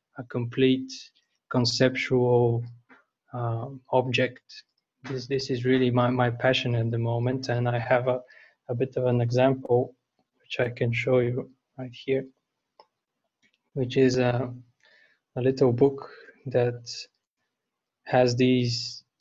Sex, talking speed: male, 125 wpm